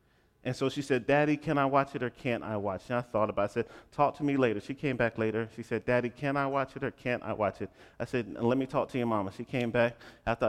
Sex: male